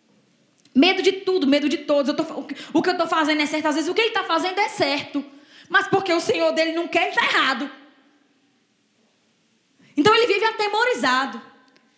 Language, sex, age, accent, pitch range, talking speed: English, female, 20-39, Brazilian, 235-320 Hz, 200 wpm